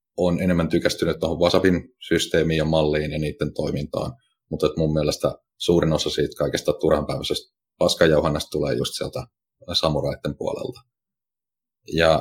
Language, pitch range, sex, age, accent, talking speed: Finnish, 75-90 Hz, male, 30-49, native, 130 wpm